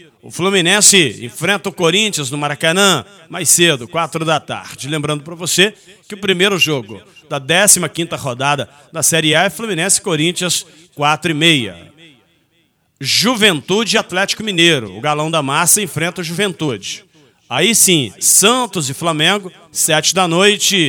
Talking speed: 145 wpm